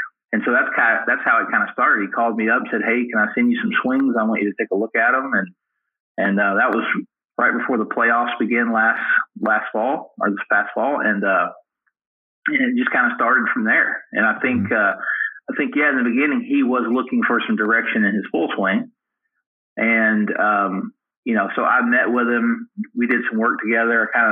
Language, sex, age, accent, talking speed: English, male, 30-49, American, 235 wpm